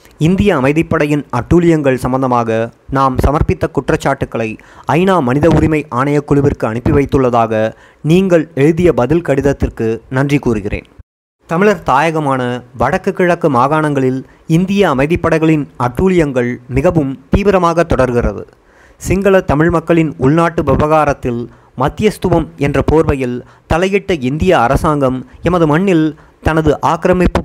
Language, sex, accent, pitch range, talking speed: Tamil, male, native, 125-170 Hz, 100 wpm